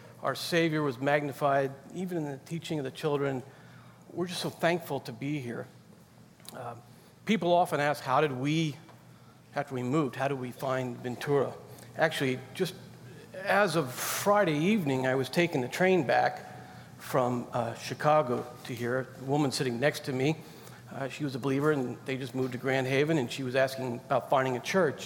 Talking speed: 180 wpm